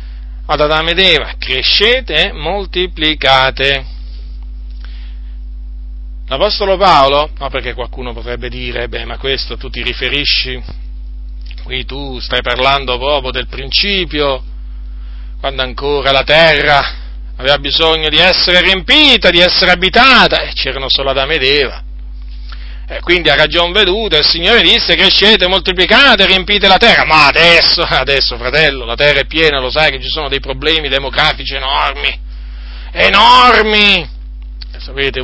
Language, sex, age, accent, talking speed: Italian, male, 40-59, native, 130 wpm